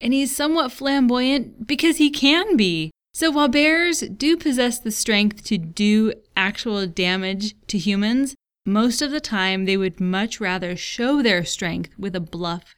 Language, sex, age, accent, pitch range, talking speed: English, female, 20-39, American, 185-245 Hz, 165 wpm